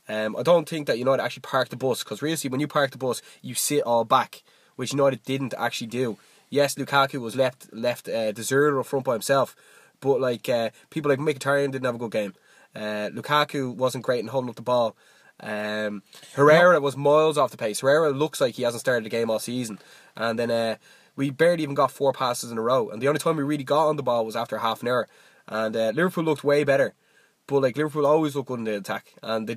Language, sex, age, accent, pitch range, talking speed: English, male, 20-39, Irish, 115-145 Hz, 240 wpm